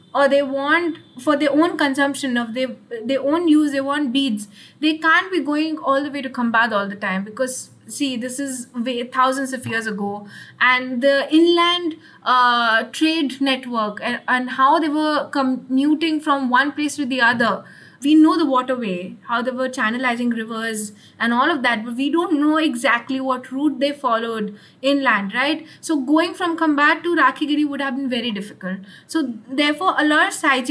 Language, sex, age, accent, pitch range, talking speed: English, female, 20-39, Indian, 245-305 Hz, 185 wpm